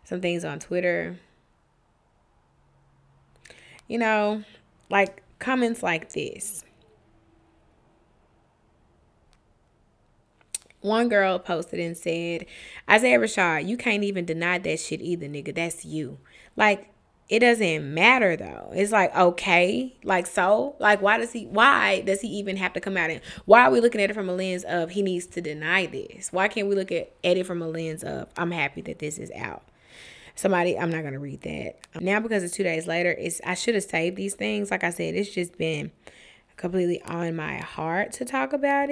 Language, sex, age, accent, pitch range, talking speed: English, female, 20-39, American, 170-210 Hz, 175 wpm